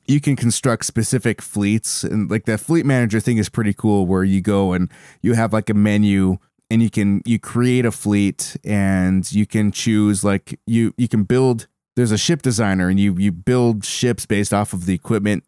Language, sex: English, male